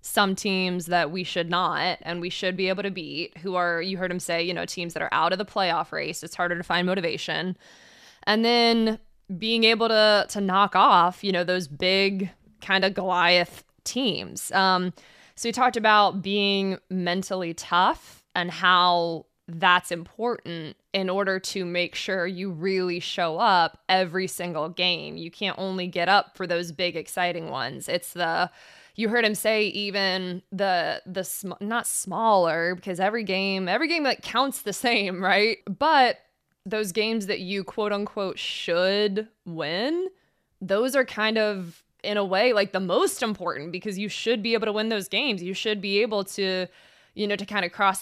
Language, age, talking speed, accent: English, 20-39, 185 wpm, American